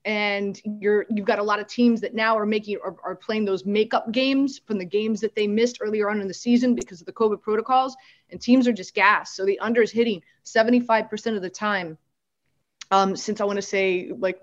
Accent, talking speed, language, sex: American, 235 wpm, English, female